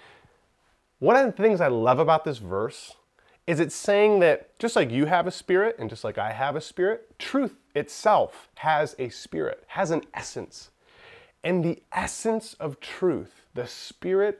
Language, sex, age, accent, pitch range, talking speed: English, male, 30-49, American, 150-220 Hz, 170 wpm